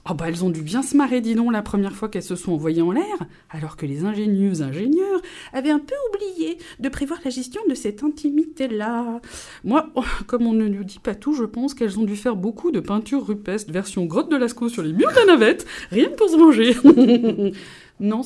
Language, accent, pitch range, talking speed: French, French, 180-255 Hz, 225 wpm